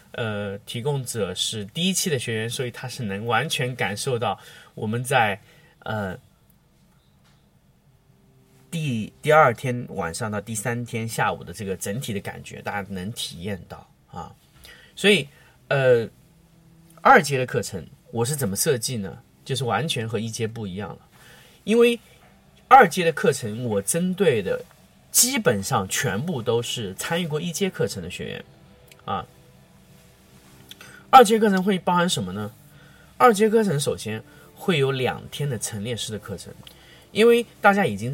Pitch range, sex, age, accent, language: 105-165 Hz, male, 30-49, native, Chinese